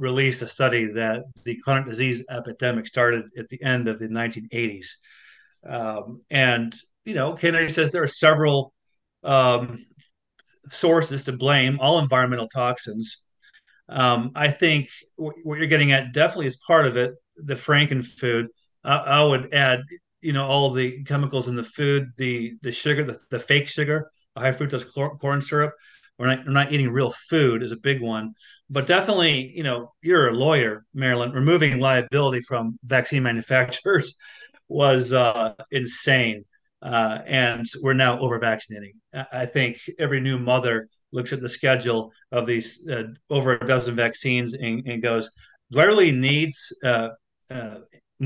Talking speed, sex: 155 wpm, male